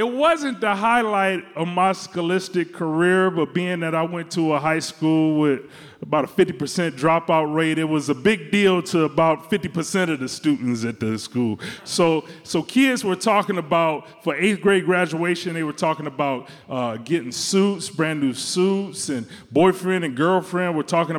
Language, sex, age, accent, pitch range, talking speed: English, male, 30-49, American, 135-180 Hz, 180 wpm